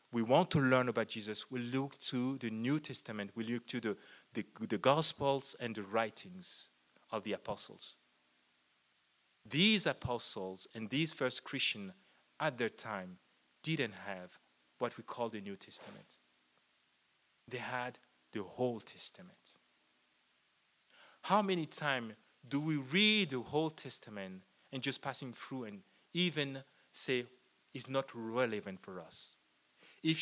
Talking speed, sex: 135 wpm, male